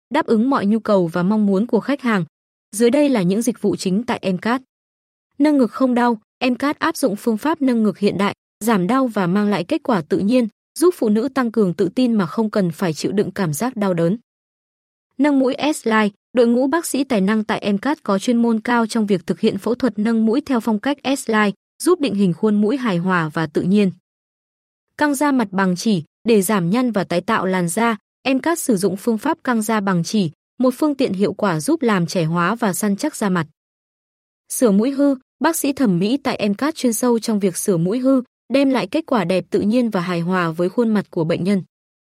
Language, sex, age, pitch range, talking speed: Vietnamese, female, 20-39, 195-255 Hz, 235 wpm